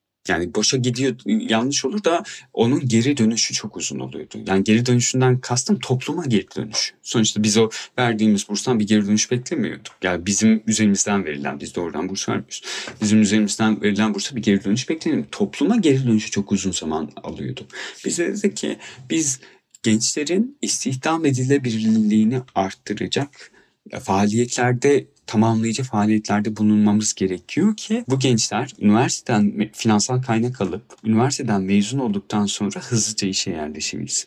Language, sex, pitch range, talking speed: Turkish, male, 105-130 Hz, 135 wpm